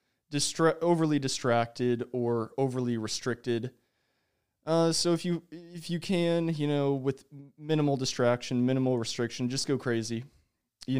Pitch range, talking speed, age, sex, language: 120-145 Hz, 130 wpm, 20-39, male, English